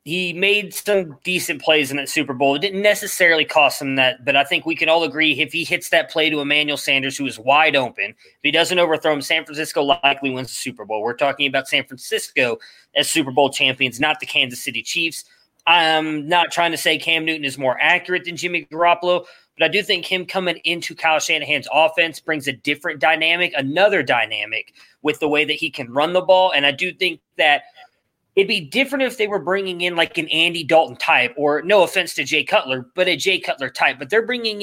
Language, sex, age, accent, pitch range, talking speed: English, male, 20-39, American, 145-180 Hz, 225 wpm